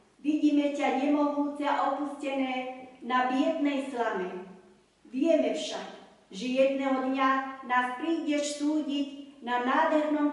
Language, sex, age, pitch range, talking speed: Slovak, female, 40-59, 220-275 Hz, 100 wpm